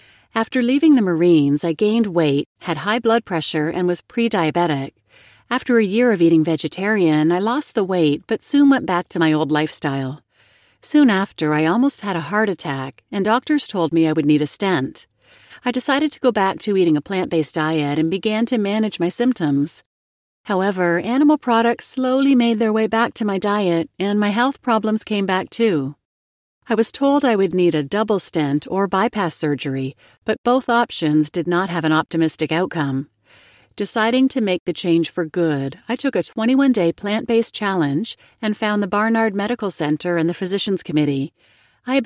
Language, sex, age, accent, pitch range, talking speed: English, female, 40-59, American, 160-225 Hz, 185 wpm